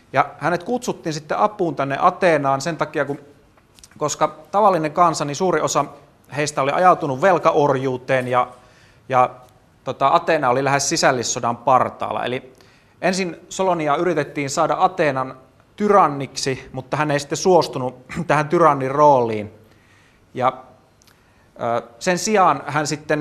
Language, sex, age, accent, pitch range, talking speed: Finnish, male, 30-49, native, 130-160 Hz, 125 wpm